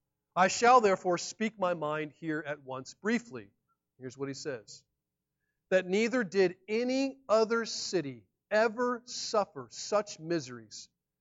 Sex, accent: male, American